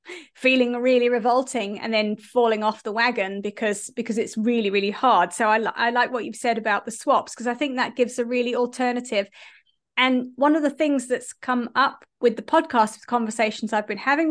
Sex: female